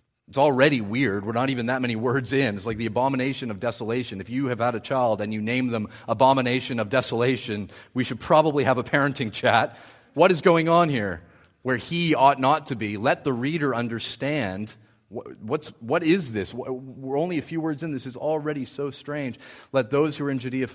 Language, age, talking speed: English, 30-49, 210 wpm